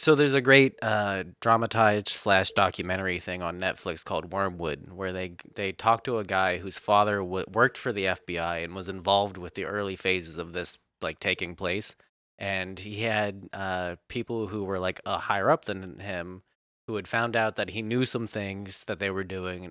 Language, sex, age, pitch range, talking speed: English, male, 20-39, 90-110 Hz, 200 wpm